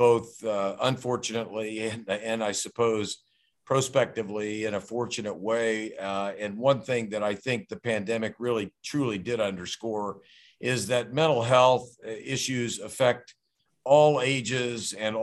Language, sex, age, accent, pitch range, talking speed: English, male, 50-69, American, 105-125 Hz, 135 wpm